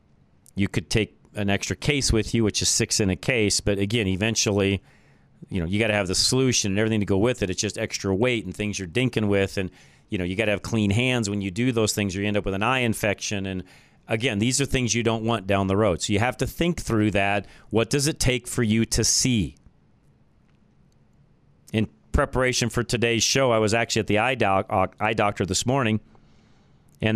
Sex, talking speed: male, 230 wpm